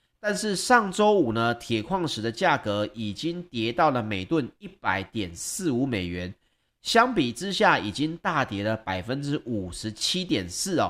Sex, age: male, 30-49